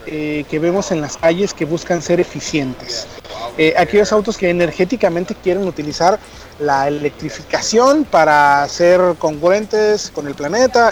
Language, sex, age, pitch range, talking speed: Spanish, male, 40-59, 160-200 Hz, 135 wpm